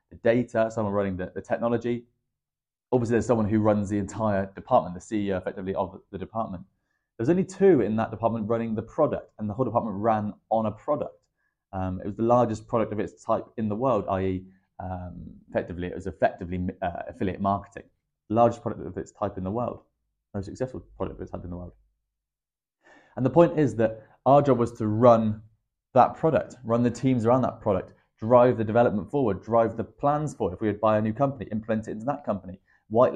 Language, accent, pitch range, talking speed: English, British, 100-125 Hz, 210 wpm